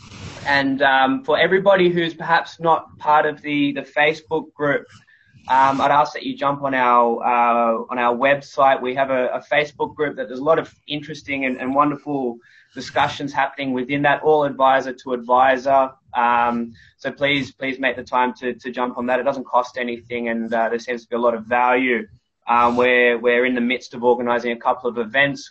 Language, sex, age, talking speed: English, male, 20-39, 200 wpm